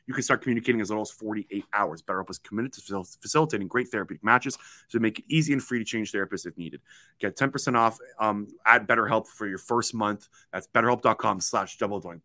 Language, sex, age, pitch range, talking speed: English, male, 30-49, 105-140 Hz, 210 wpm